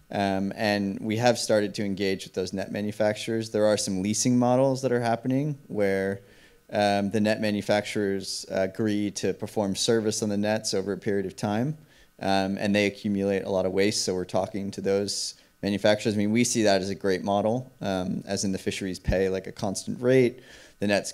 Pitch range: 95-110 Hz